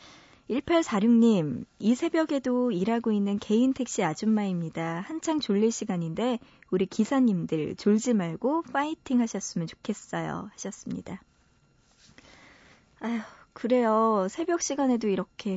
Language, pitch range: Korean, 185-245 Hz